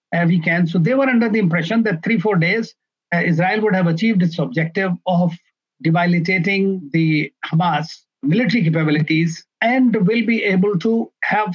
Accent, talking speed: Indian, 155 wpm